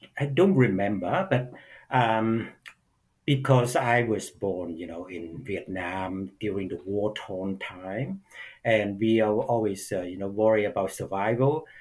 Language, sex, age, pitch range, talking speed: English, male, 60-79, 100-125 Hz, 135 wpm